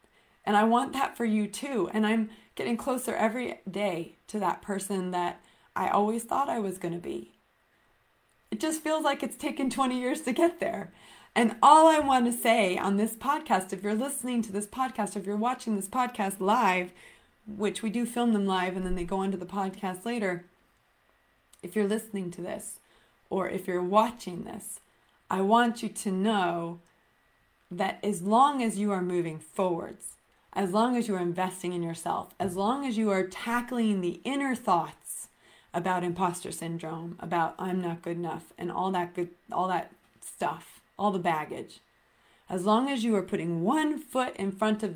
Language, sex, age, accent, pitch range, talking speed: English, female, 30-49, American, 180-230 Hz, 185 wpm